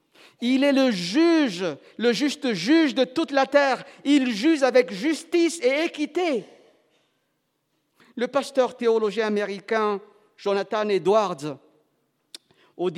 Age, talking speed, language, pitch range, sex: 50-69, 110 wpm, French, 240-320 Hz, male